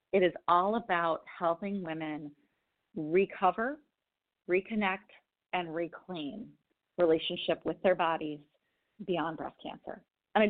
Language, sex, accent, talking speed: English, female, American, 110 wpm